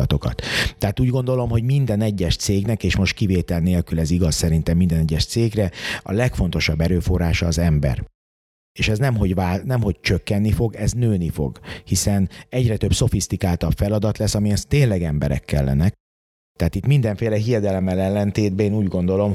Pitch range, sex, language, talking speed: 85-110 Hz, male, Hungarian, 165 wpm